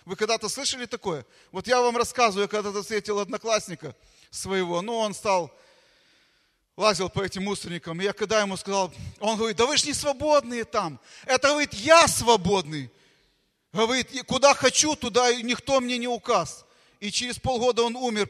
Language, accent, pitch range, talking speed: Russian, native, 185-235 Hz, 170 wpm